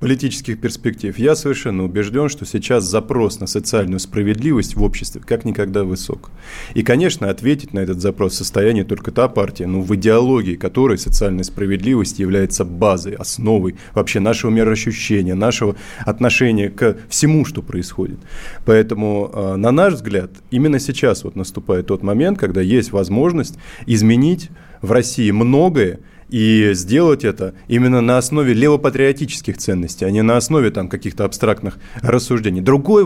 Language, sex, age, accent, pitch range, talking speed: Russian, male, 20-39, native, 100-135 Hz, 140 wpm